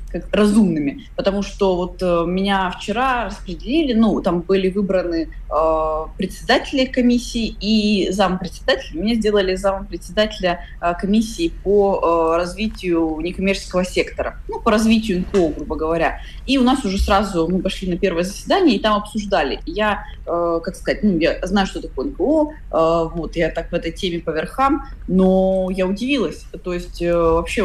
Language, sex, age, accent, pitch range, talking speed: Russian, female, 20-39, native, 180-225 Hz, 160 wpm